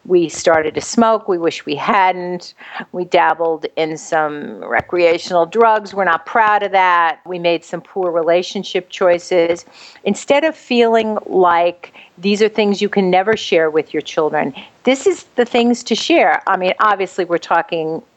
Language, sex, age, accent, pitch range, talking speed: English, female, 50-69, American, 175-230 Hz, 165 wpm